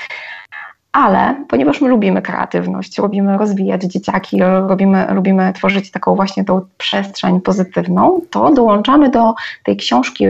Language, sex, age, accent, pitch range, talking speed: Polish, female, 20-39, native, 190-215 Hz, 120 wpm